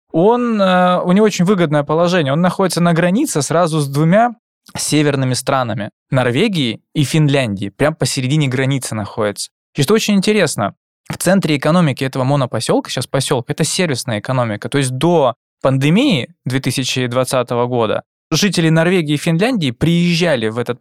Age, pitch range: 20-39, 135-175 Hz